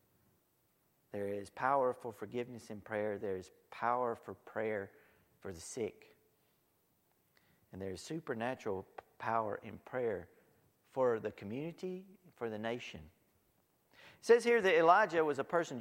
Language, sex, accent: English, male, American